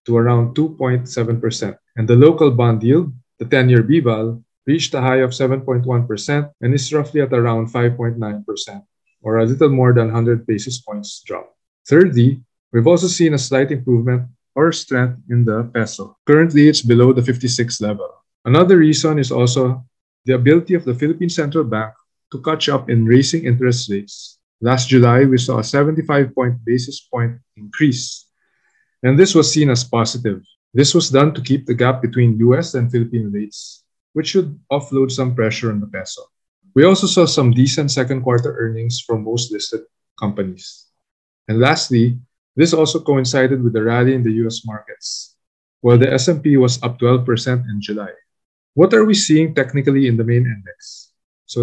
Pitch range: 115-145 Hz